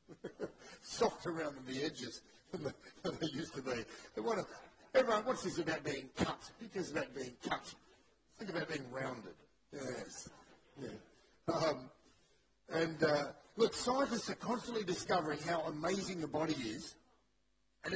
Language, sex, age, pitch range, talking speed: English, male, 50-69, 170-235 Hz, 135 wpm